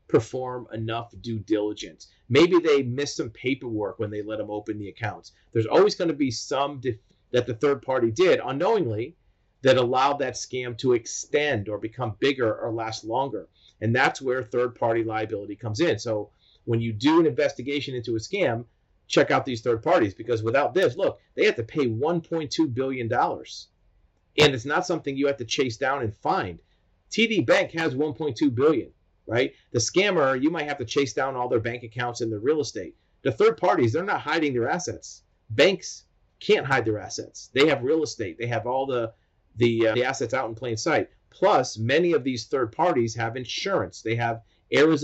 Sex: male